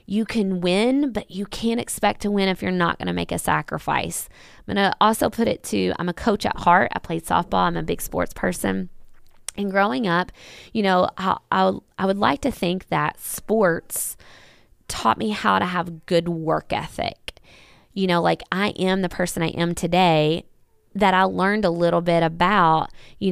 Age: 20-39